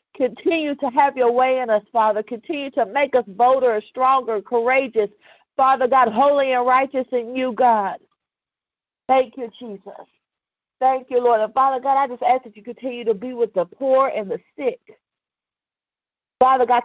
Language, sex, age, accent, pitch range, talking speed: English, female, 50-69, American, 235-275 Hz, 170 wpm